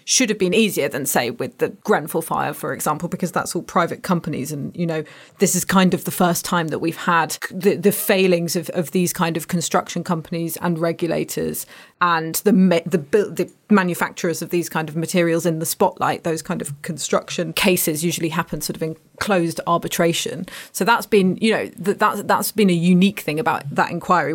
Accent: British